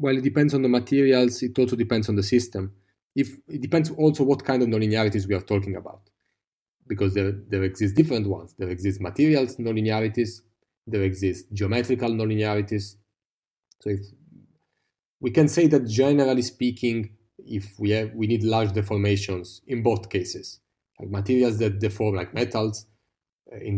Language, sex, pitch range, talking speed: English, male, 100-125 Hz, 160 wpm